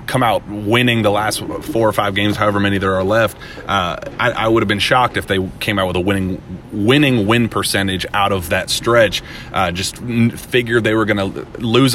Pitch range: 95-105 Hz